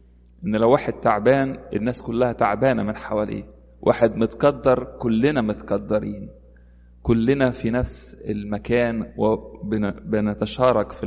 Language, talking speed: English, 105 wpm